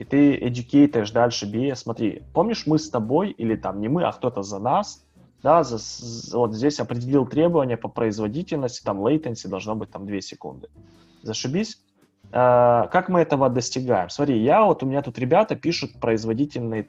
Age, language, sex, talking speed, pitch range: 20-39, Russian, male, 175 wpm, 110-150 Hz